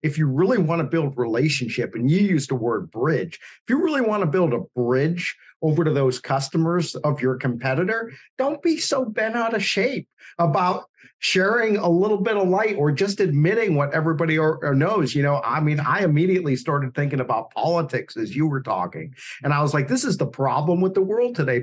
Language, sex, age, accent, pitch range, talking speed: English, male, 50-69, American, 155-235 Hz, 210 wpm